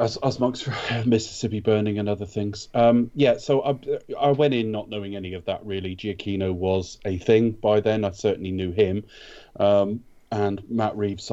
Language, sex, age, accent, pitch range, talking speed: English, male, 30-49, British, 90-110 Hz, 190 wpm